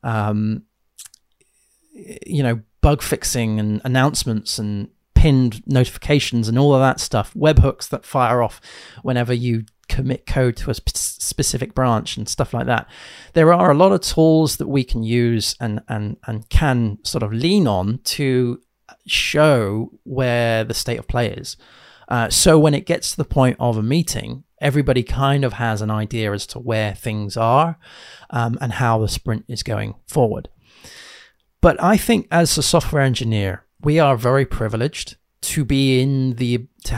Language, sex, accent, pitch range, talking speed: English, male, British, 115-140 Hz, 165 wpm